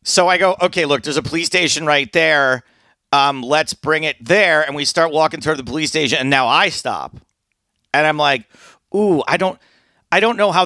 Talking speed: 210 wpm